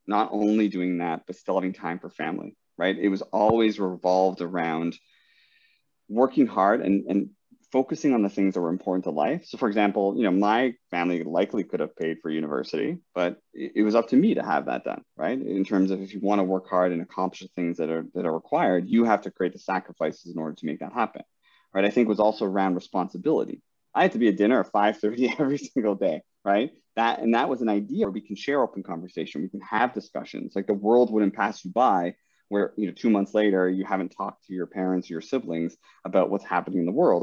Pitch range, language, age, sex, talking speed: 95-115 Hz, English, 30-49, male, 240 wpm